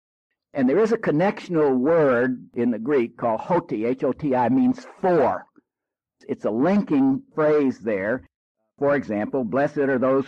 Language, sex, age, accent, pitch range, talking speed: English, male, 60-79, American, 125-175 Hz, 140 wpm